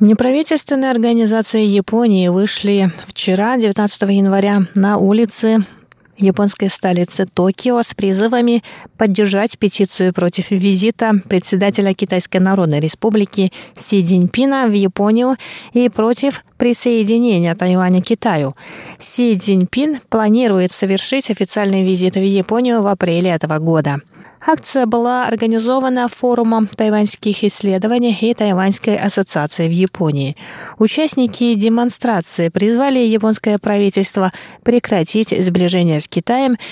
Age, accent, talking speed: 20-39, native, 105 wpm